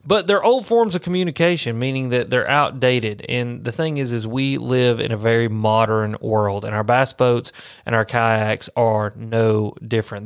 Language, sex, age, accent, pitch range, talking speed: English, male, 30-49, American, 115-130 Hz, 185 wpm